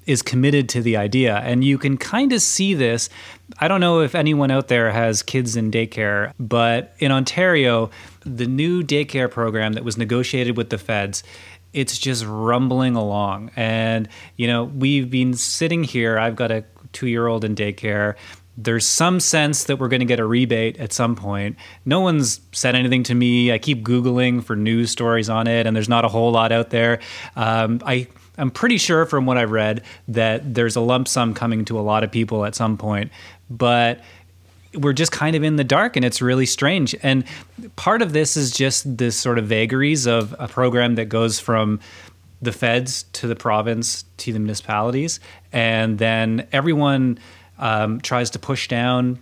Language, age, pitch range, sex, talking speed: English, 30-49, 110-130 Hz, male, 190 wpm